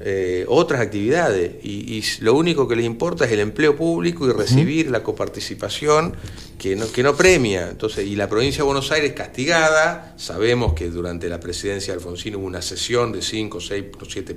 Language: Spanish